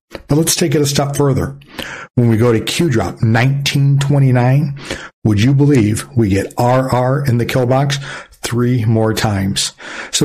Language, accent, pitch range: English, American, 110-145 Hz